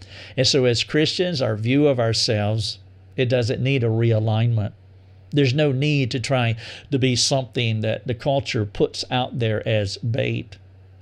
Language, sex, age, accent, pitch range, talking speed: English, male, 50-69, American, 105-140 Hz, 160 wpm